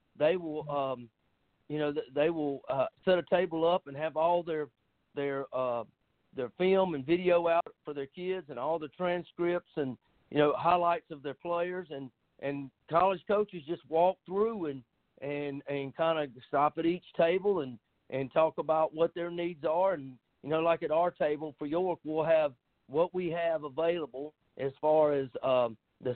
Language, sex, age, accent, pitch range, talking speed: English, male, 50-69, American, 145-175 Hz, 185 wpm